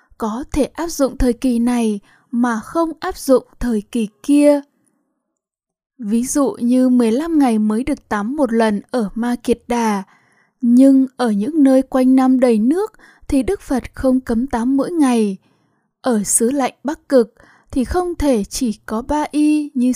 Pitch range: 230-280 Hz